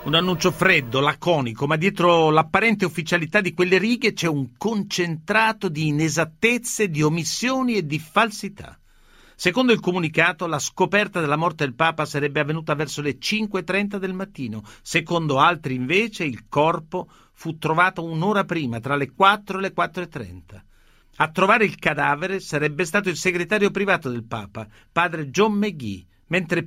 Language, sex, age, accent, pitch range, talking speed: Italian, male, 50-69, native, 145-195 Hz, 150 wpm